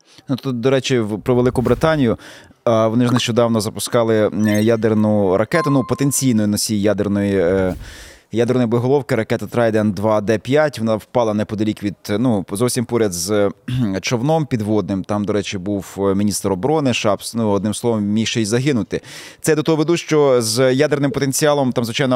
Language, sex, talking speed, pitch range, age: Ukrainian, male, 155 wpm, 110-140 Hz, 20-39